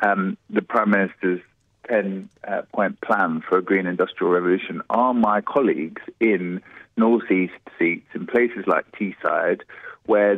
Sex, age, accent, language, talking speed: male, 30-49, British, English, 135 wpm